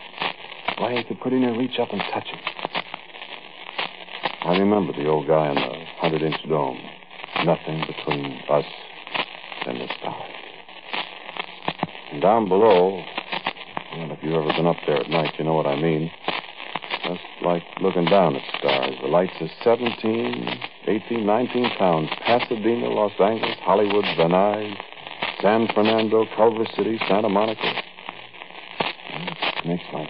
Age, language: 60-79, English